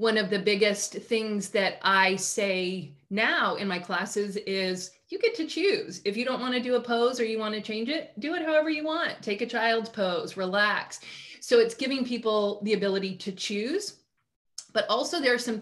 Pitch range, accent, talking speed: 195-230 Hz, American, 210 wpm